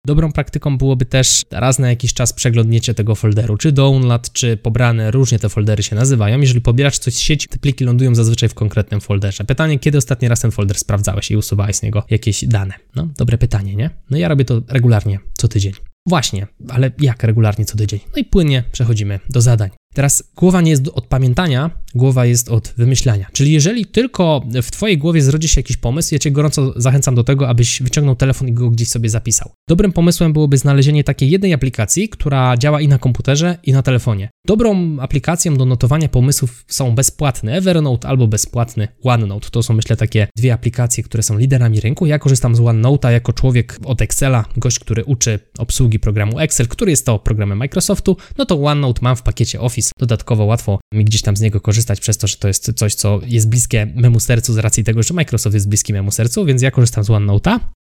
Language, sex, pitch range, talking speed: Polish, male, 110-140 Hz, 205 wpm